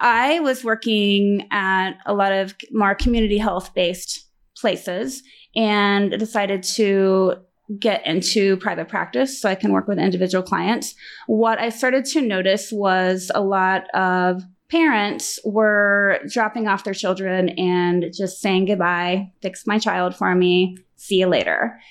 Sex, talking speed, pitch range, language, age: female, 140 wpm, 185-215 Hz, English, 20-39